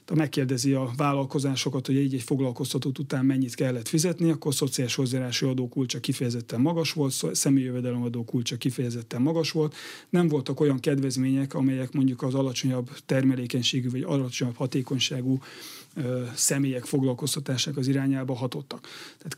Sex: male